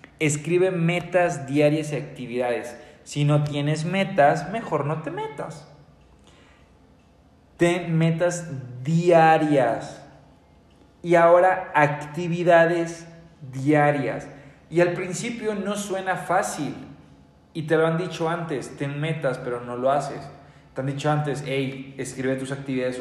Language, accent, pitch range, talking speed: Spanish, Mexican, 135-170 Hz, 120 wpm